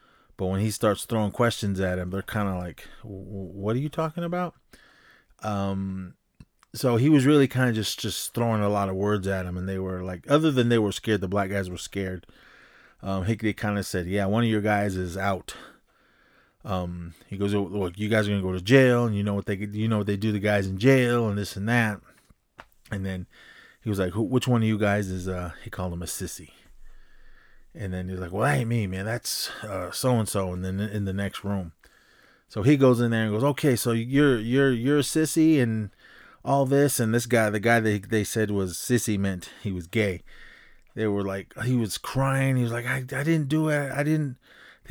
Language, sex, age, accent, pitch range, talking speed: English, male, 30-49, American, 100-125 Hz, 235 wpm